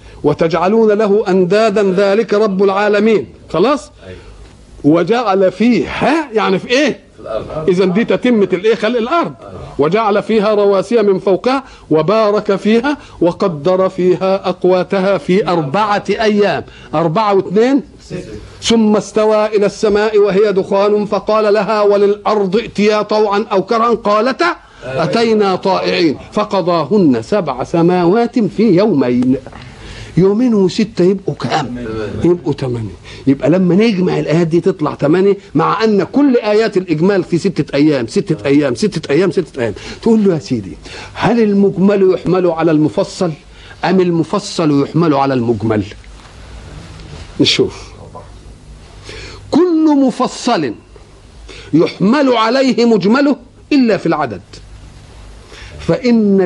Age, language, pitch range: 50-69, Arabic, 150-215 Hz